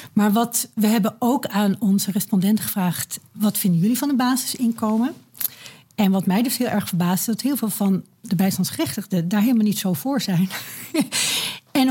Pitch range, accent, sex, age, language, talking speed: 190-250 Hz, Dutch, female, 60-79, Dutch, 180 wpm